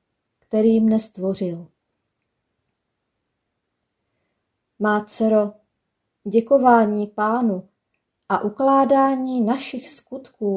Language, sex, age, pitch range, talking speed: Czech, female, 30-49, 205-245 Hz, 55 wpm